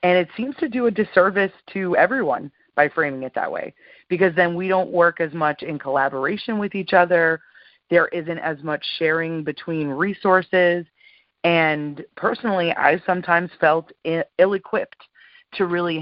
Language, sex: English, female